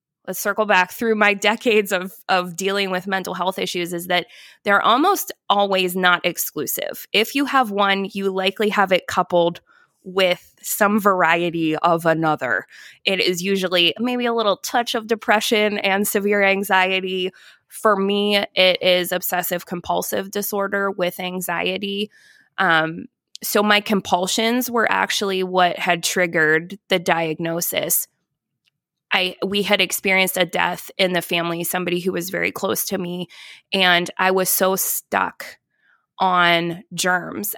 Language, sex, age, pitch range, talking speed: English, female, 20-39, 180-205 Hz, 140 wpm